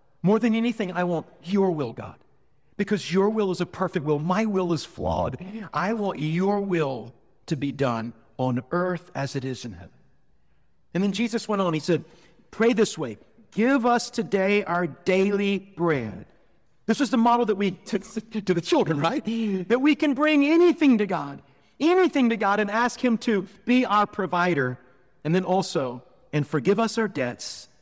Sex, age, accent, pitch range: male, 50-69, American, 150-215 Hz